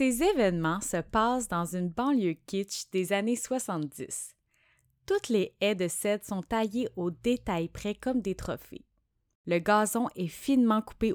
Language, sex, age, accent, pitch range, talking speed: French, female, 20-39, Canadian, 165-225 Hz, 155 wpm